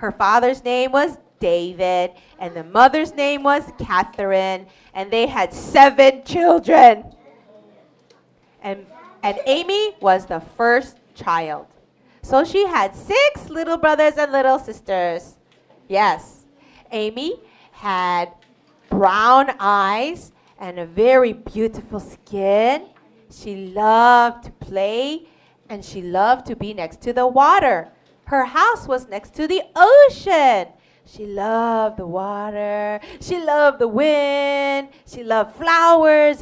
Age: 30-49